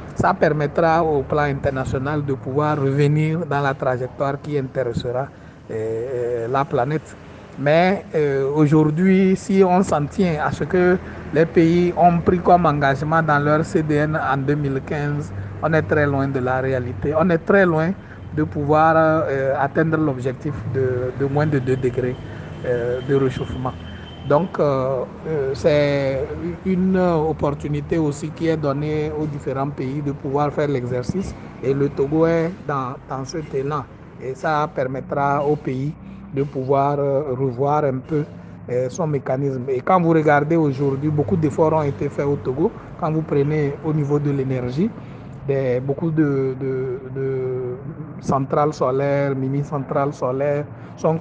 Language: French